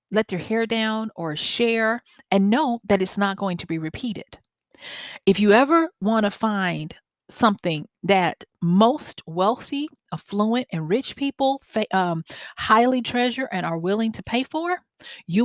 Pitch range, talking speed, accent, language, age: 170-230 Hz, 150 wpm, American, English, 40-59